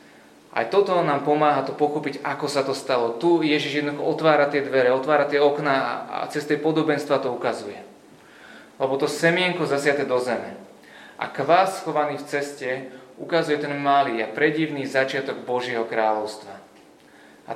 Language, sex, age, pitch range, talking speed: Slovak, male, 20-39, 120-150 Hz, 155 wpm